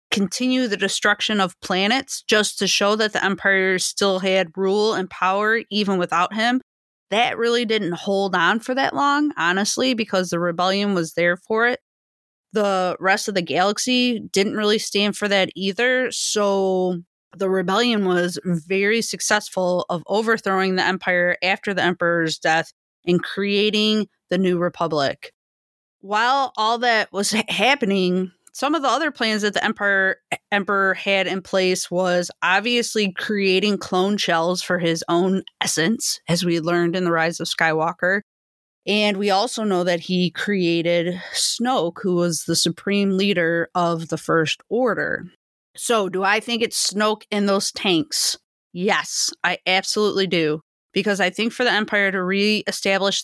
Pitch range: 180-210 Hz